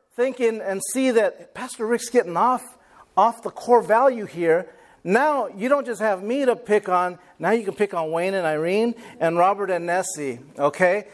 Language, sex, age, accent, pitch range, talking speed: English, male, 50-69, American, 190-250 Hz, 190 wpm